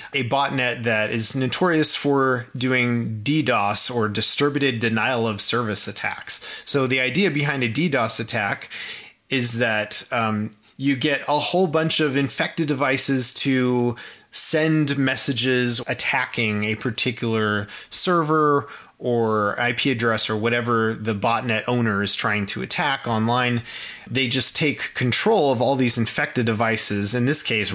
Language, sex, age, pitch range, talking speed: English, male, 20-39, 115-140 Hz, 140 wpm